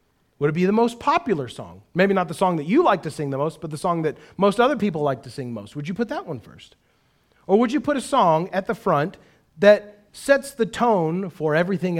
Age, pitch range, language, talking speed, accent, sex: 40-59, 160-230 Hz, English, 250 wpm, American, male